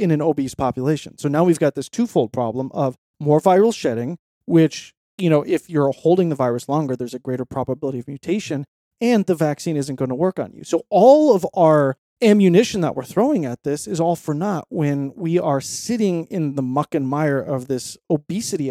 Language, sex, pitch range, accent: English, male, 130-175 Hz, American